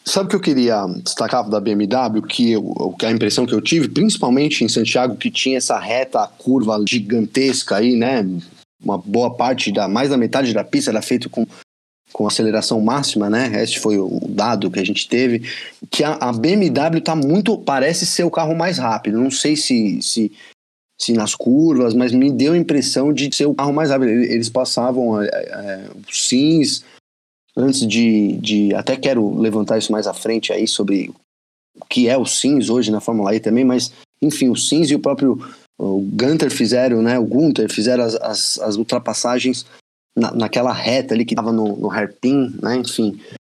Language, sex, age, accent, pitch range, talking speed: Portuguese, male, 20-39, Brazilian, 110-135 Hz, 190 wpm